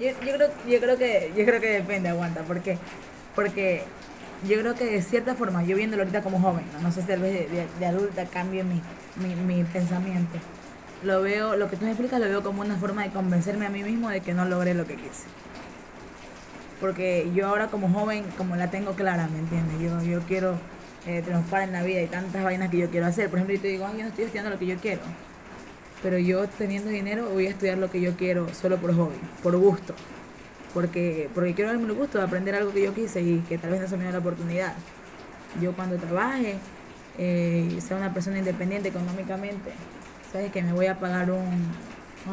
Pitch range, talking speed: 180-200 Hz, 220 wpm